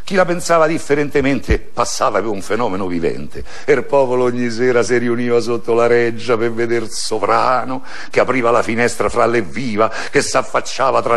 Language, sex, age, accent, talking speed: Italian, male, 60-79, native, 170 wpm